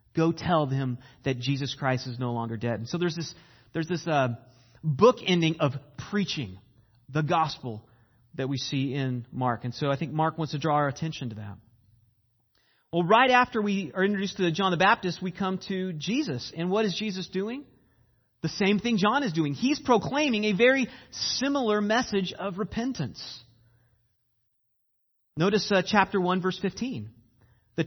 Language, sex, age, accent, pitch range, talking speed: English, male, 30-49, American, 125-200 Hz, 170 wpm